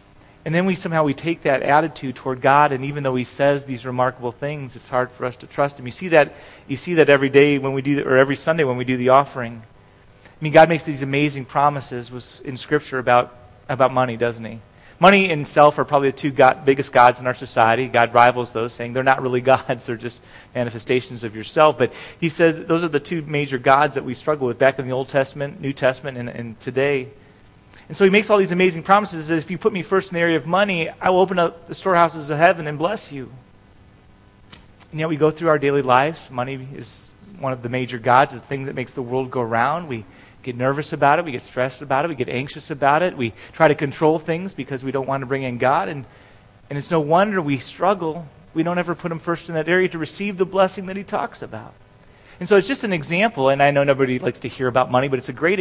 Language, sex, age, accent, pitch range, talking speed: English, male, 30-49, American, 125-165 Hz, 250 wpm